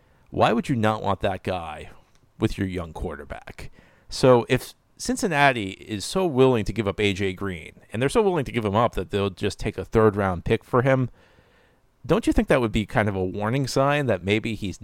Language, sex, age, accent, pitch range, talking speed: English, male, 40-59, American, 95-115 Hz, 215 wpm